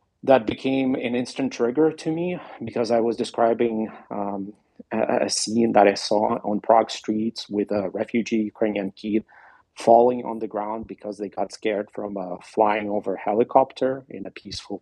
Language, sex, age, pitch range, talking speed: English, male, 40-59, 105-130 Hz, 165 wpm